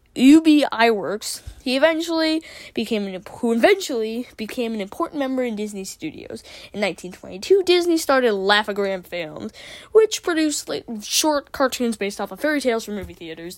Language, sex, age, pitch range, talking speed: English, female, 10-29, 200-300 Hz, 140 wpm